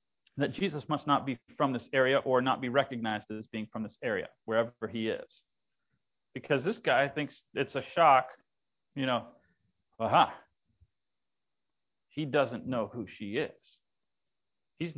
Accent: American